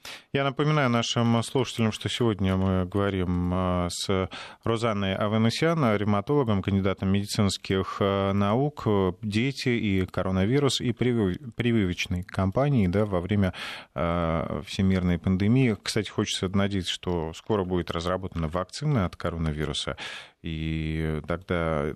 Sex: male